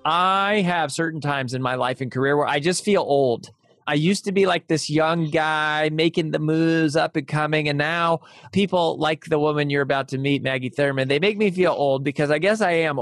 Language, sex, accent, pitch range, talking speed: English, male, American, 125-155 Hz, 230 wpm